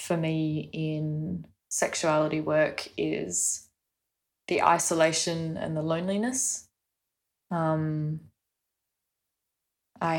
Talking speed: 75 wpm